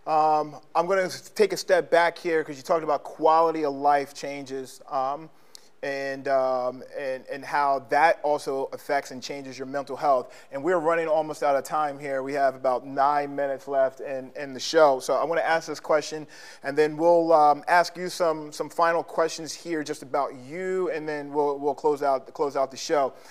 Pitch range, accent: 140-165 Hz, American